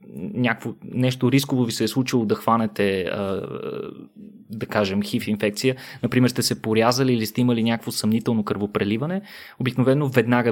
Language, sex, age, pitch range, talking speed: Bulgarian, male, 20-39, 110-135 Hz, 145 wpm